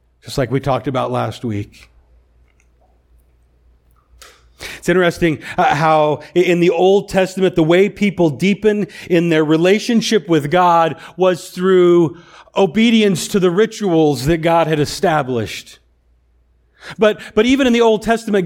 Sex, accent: male, American